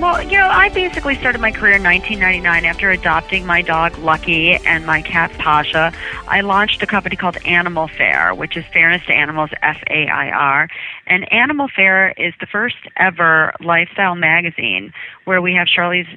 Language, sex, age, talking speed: English, female, 40-59, 165 wpm